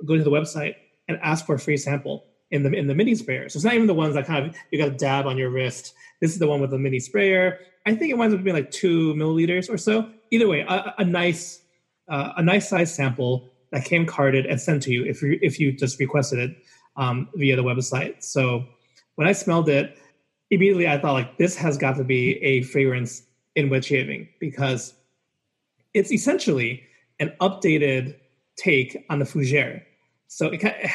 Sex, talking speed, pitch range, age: male, 210 wpm, 130-180 Hz, 30-49